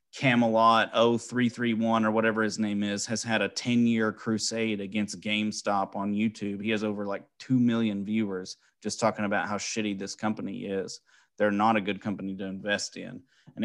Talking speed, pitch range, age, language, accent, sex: 175 wpm, 100-110 Hz, 30-49, English, American, male